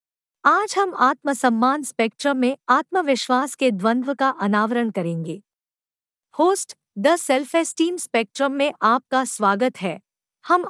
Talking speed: 120 wpm